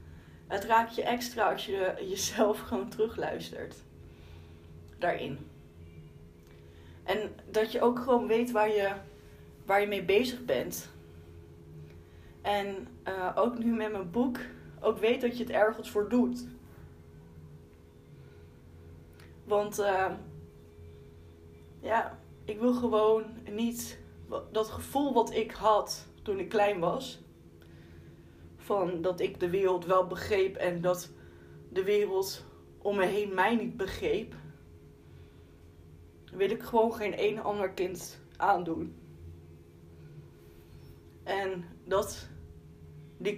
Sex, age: female, 20-39